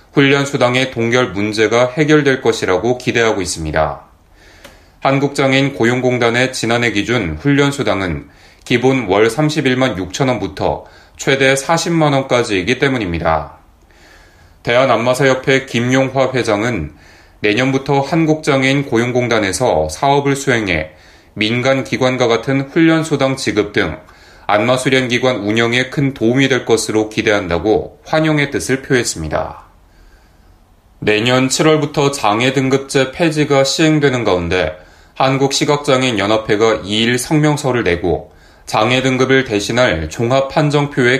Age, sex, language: 30-49, male, Korean